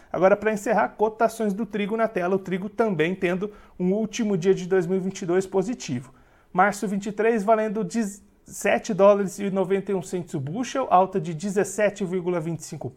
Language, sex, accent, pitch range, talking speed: Portuguese, male, Brazilian, 185-220 Hz, 140 wpm